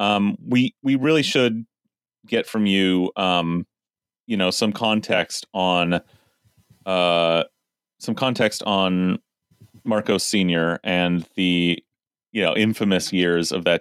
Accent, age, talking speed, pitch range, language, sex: American, 30-49, 120 wpm, 90-105 Hz, English, male